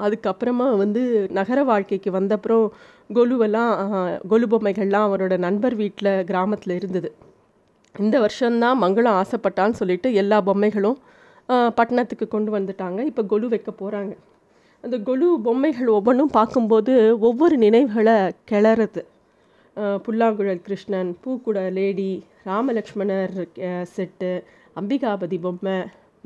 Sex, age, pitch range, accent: female, 30-49, 200-245 Hz, native